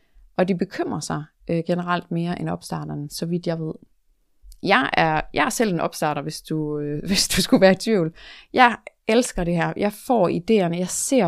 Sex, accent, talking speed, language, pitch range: female, native, 200 wpm, Danish, 170-210 Hz